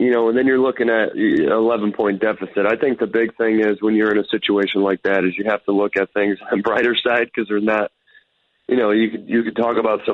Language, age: English, 30-49